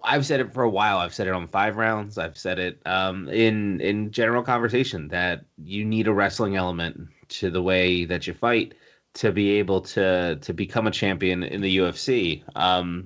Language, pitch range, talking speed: English, 95-115 Hz, 200 wpm